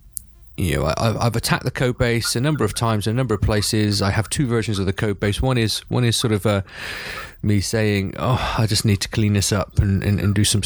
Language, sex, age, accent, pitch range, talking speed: English, male, 30-49, British, 95-110 Hz, 235 wpm